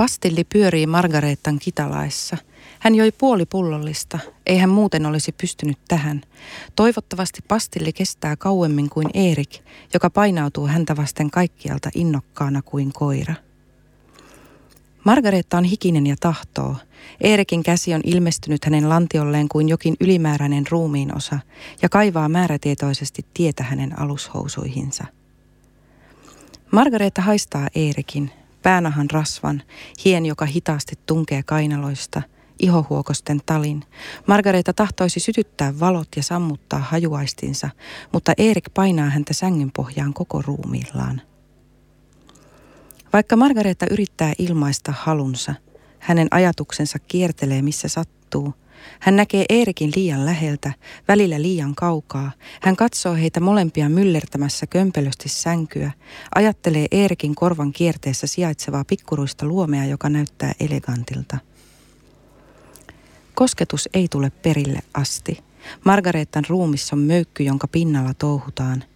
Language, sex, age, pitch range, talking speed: Finnish, female, 30-49, 145-180 Hz, 105 wpm